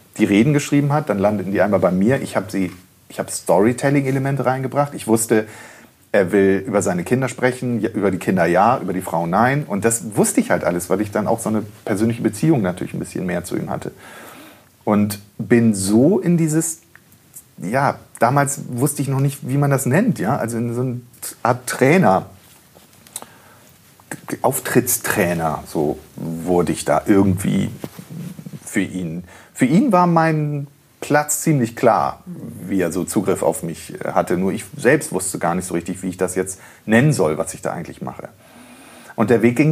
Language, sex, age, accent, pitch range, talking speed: German, male, 40-59, German, 105-140 Hz, 180 wpm